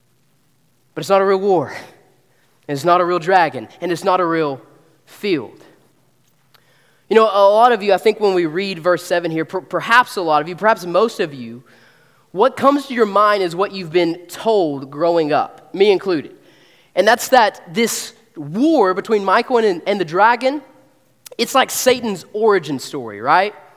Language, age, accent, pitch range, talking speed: English, 20-39, American, 175-245 Hz, 180 wpm